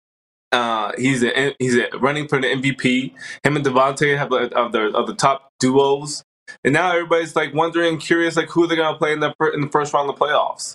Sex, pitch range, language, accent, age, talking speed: male, 125-165 Hz, English, American, 20-39, 225 wpm